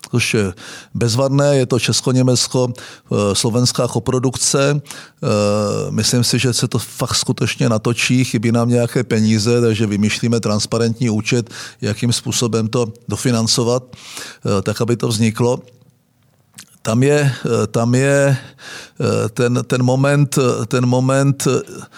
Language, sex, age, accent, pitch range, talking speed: Czech, male, 50-69, native, 115-130 Hz, 105 wpm